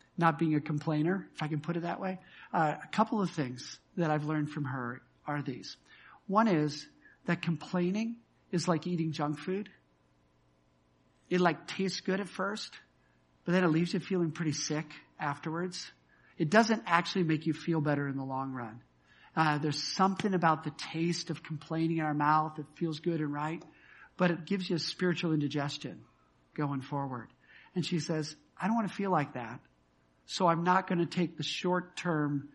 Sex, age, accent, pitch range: male, 50-69, American, 145-175 Hz